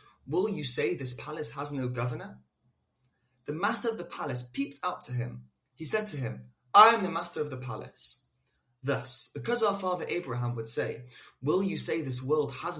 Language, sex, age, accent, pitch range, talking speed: English, male, 20-39, British, 125-170 Hz, 190 wpm